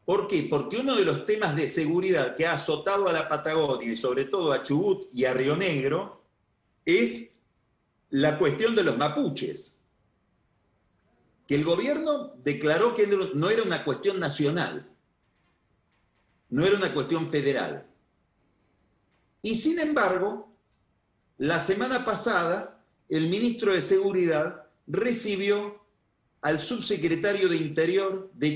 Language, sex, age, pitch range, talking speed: Spanish, male, 40-59, 140-210 Hz, 130 wpm